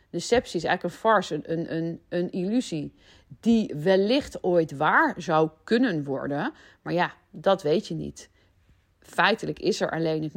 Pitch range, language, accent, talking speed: 160-190 Hz, Dutch, Dutch, 155 wpm